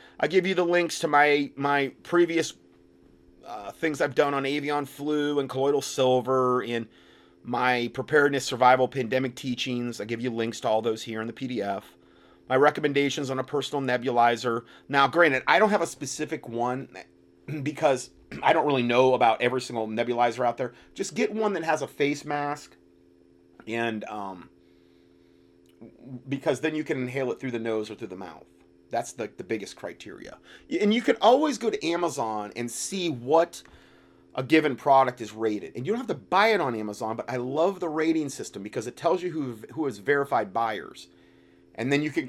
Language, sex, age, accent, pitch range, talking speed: English, male, 30-49, American, 105-145 Hz, 185 wpm